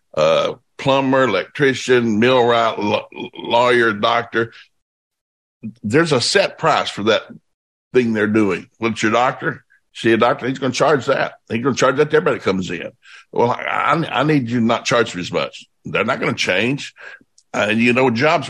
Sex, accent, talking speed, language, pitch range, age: male, American, 190 wpm, English, 115-155 Hz, 60-79